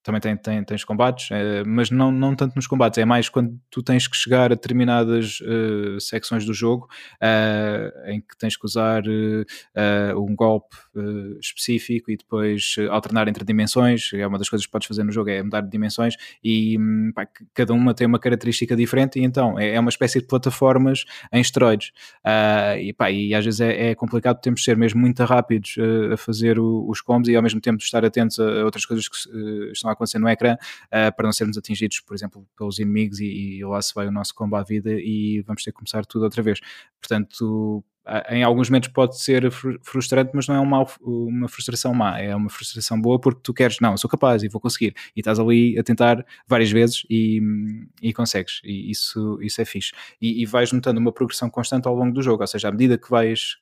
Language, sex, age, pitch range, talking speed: Portuguese, male, 20-39, 105-120 Hz, 215 wpm